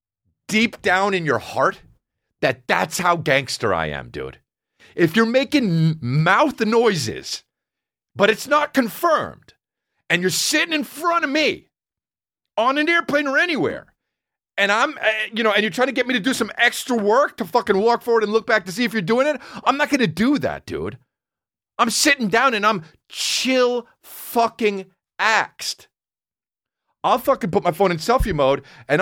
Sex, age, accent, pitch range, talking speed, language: male, 40-59, American, 165-250 Hz, 175 wpm, English